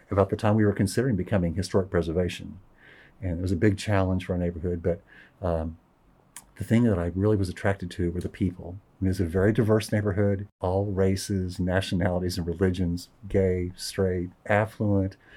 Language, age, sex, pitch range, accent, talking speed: English, 50-69, male, 90-110 Hz, American, 185 wpm